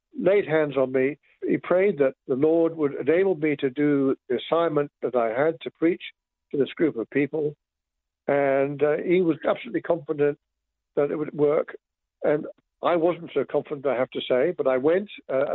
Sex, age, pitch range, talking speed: male, 60-79, 130-165 Hz, 190 wpm